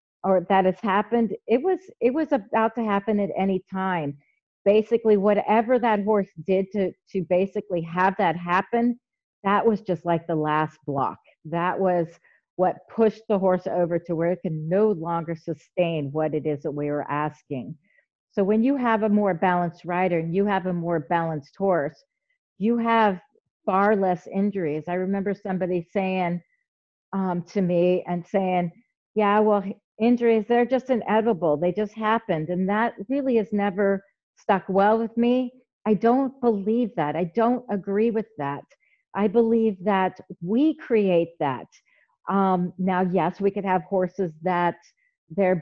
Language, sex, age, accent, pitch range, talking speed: English, female, 50-69, American, 180-225 Hz, 165 wpm